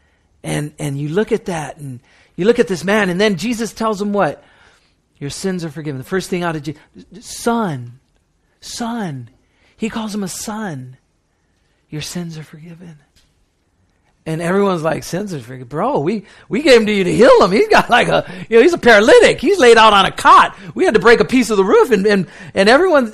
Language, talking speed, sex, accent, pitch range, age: English, 215 wpm, male, American, 130-205 Hz, 40-59